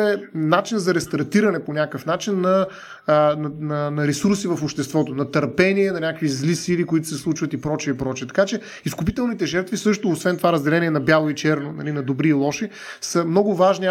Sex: male